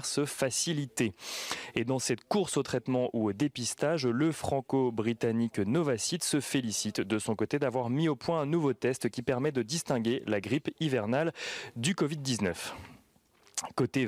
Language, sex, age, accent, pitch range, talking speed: French, male, 30-49, French, 115-145 Hz, 155 wpm